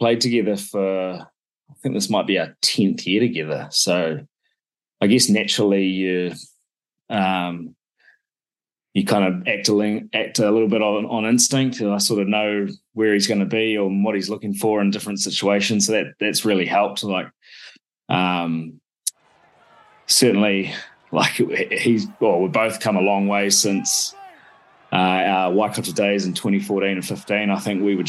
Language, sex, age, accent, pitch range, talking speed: English, male, 20-39, Australian, 95-110 Hz, 170 wpm